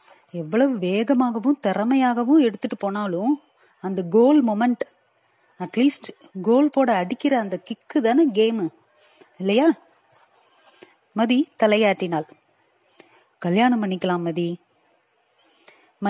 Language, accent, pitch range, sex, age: Tamil, native, 195-265 Hz, female, 30-49